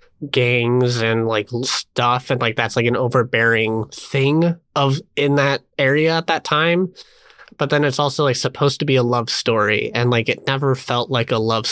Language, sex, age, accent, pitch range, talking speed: English, male, 20-39, American, 115-140 Hz, 190 wpm